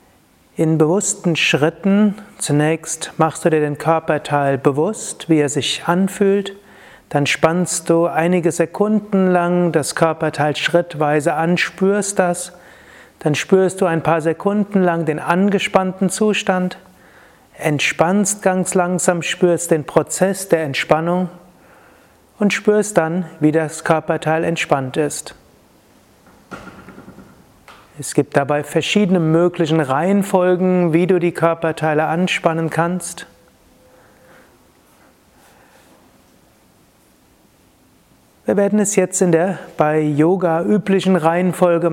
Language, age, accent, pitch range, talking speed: German, 30-49, German, 155-185 Hz, 105 wpm